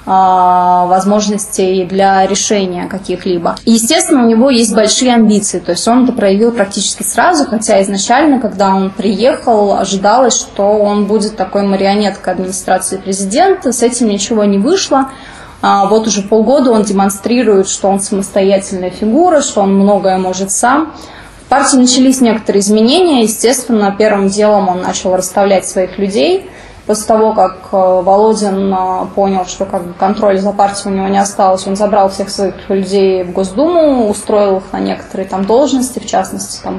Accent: native